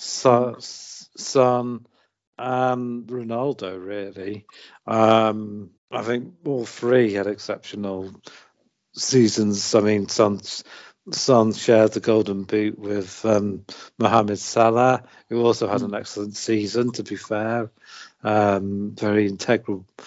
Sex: male